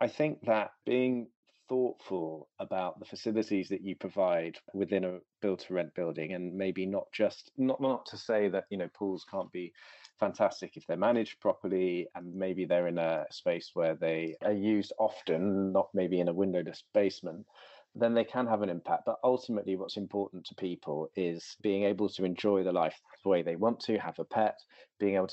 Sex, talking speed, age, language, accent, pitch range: male, 195 wpm, 30-49, English, British, 90-105 Hz